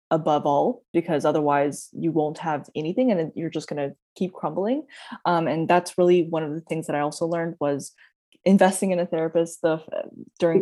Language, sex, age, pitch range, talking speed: English, female, 20-39, 145-175 Hz, 185 wpm